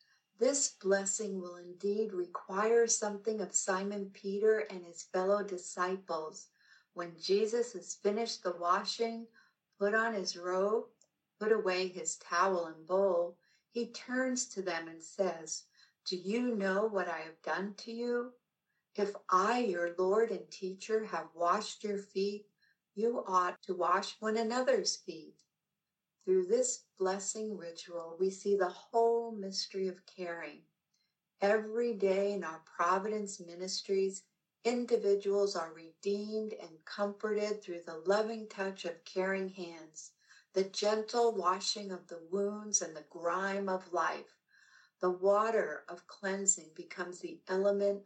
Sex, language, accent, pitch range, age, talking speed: female, English, American, 180-215 Hz, 60-79, 135 wpm